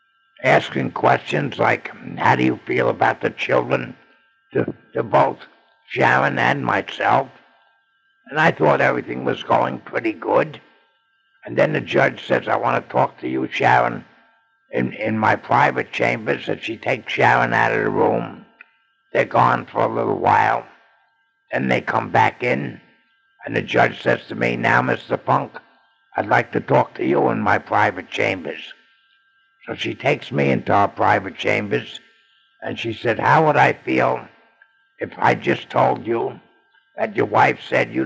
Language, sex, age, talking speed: English, male, 60-79, 165 wpm